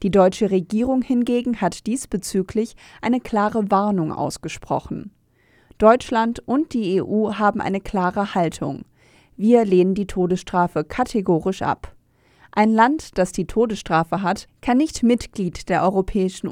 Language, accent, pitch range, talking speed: German, German, 180-225 Hz, 125 wpm